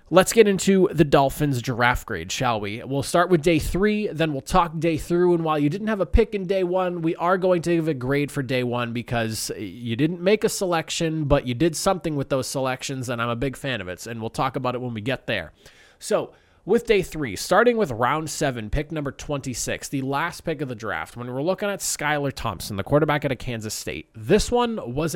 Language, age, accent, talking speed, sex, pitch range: English, 20-39, American, 240 wpm, male, 125-180 Hz